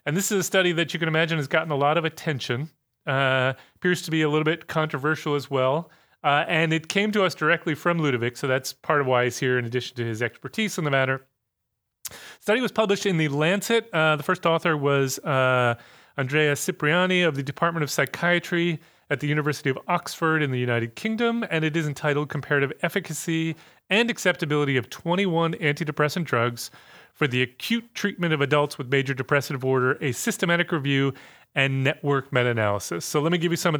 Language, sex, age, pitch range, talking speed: English, male, 30-49, 140-175 Hz, 200 wpm